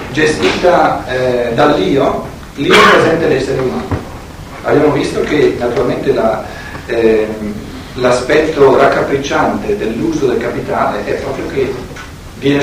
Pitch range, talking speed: 125-170 Hz, 110 wpm